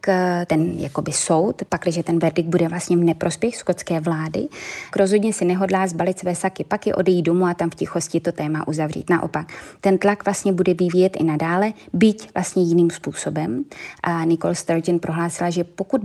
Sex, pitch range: female, 165-185 Hz